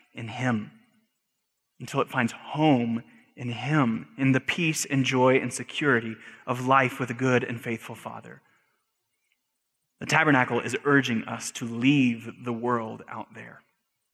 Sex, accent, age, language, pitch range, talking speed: male, American, 30-49, English, 130-175 Hz, 145 wpm